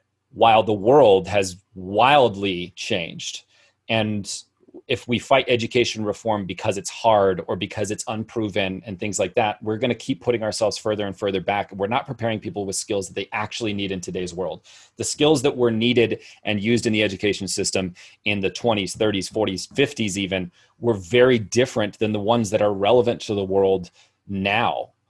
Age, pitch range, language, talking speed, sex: 30-49, 100-115 Hz, English, 180 wpm, male